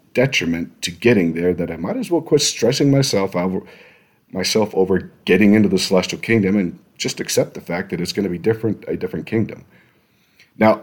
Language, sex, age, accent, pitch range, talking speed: English, male, 40-59, American, 90-115 Hz, 195 wpm